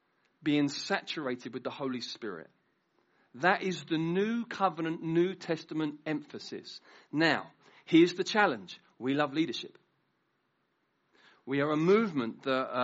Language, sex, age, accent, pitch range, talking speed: English, male, 40-59, British, 135-190 Hz, 120 wpm